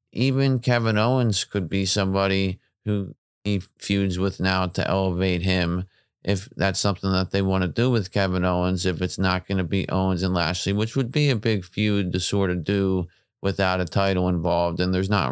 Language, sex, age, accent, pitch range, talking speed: English, male, 30-49, American, 90-105 Hz, 200 wpm